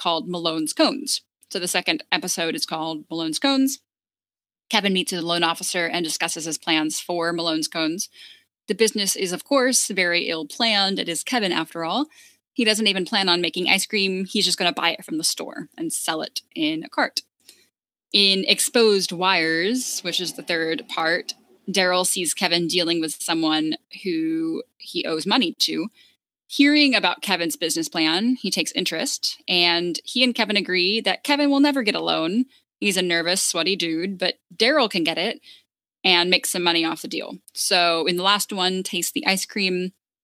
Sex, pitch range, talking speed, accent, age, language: female, 170-230 Hz, 185 wpm, American, 10-29, English